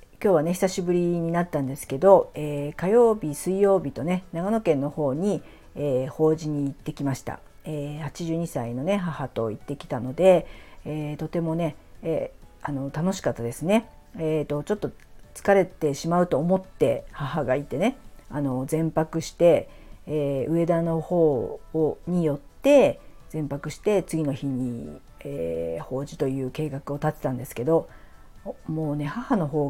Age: 50-69